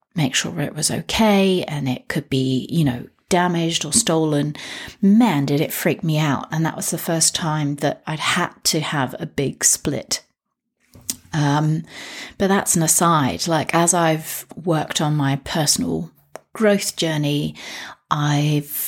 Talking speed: 155 wpm